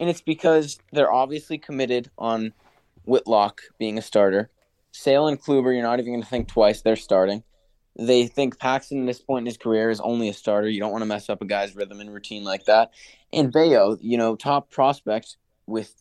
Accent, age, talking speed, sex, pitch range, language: American, 20-39, 210 wpm, male, 115-145 Hz, English